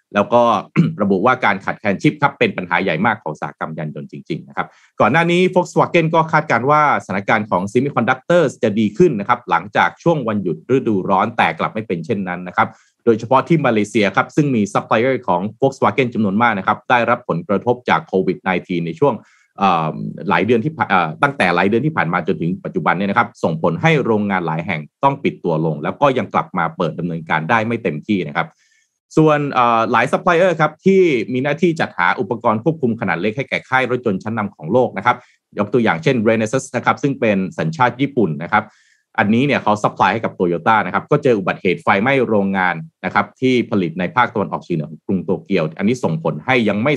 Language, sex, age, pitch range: Thai, male, 30-49, 95-145 Hz